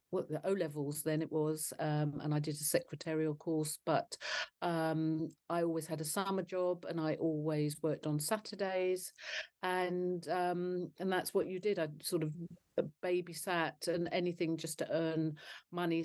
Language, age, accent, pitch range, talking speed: English, 40-59, British, 155-180 Hz, 170 wpm